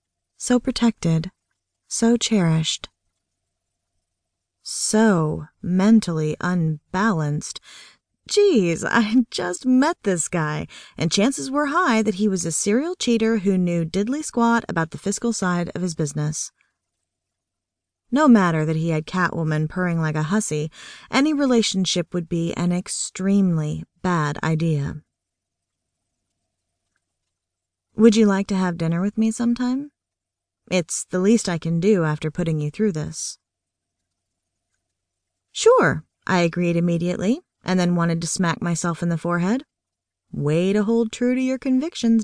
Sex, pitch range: female, 150-220 Hz